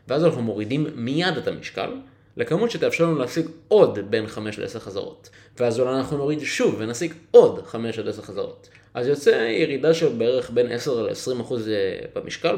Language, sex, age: Hebrew, male, 20-39